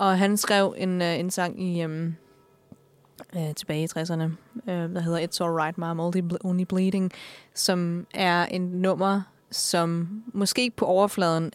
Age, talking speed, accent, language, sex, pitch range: 20-39, 150 wpm, native, Danish, female, 165-190 Hz